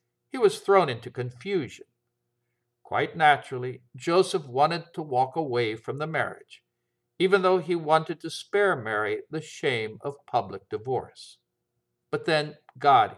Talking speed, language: 135 wpm, English